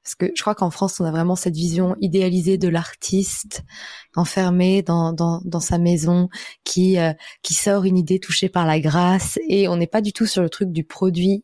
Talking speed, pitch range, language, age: 215 wpm, 175-205 Hz, French, 20-39